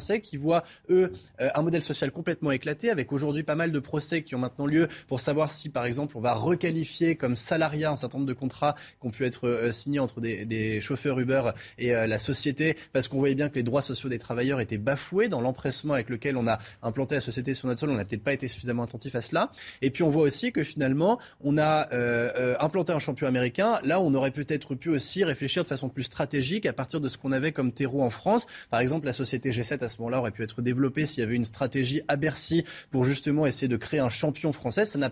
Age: 20-39